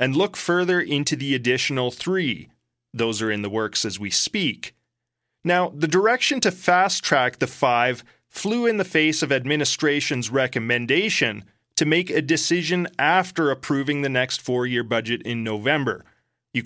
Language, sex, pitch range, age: English, male, 120-165 Hz, 30-49